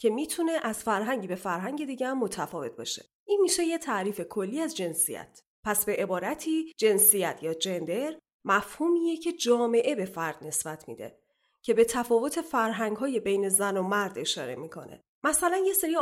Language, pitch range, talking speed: Persian, 215-290 Hz, 160 wpm